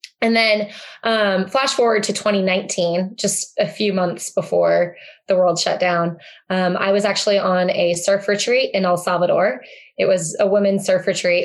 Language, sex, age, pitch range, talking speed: English, female, 20-39, 185-230 Hz, 175 wpm